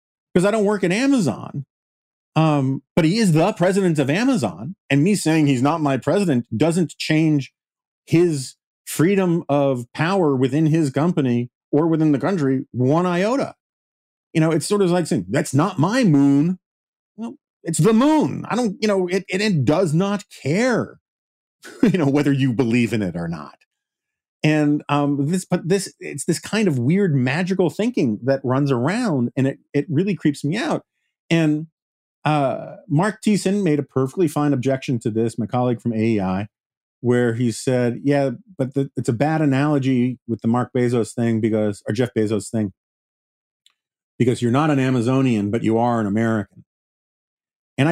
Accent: American